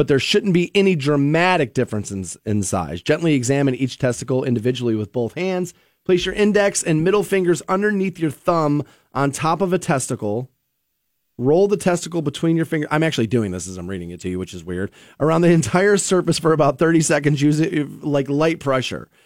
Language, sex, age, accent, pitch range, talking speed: English, male, 30-49, American, 115-165 Hz, 195 wpm